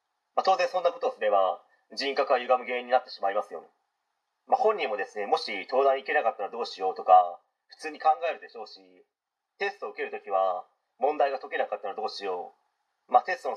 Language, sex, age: Japanese, male, 30-49